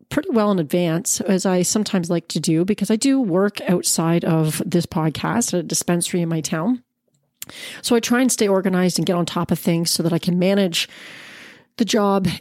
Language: English